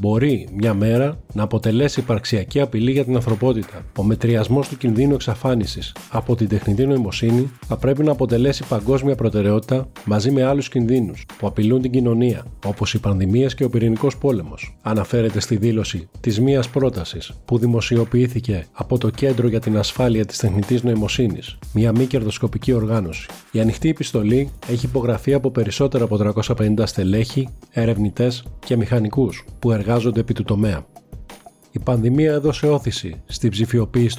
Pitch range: 105-130 Hz